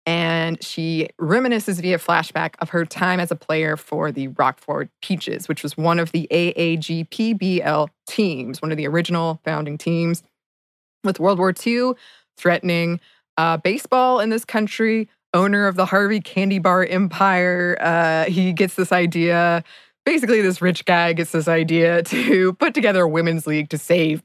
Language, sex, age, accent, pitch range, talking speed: English, female, 20-39, American, 160-195 Hz, 160 wpm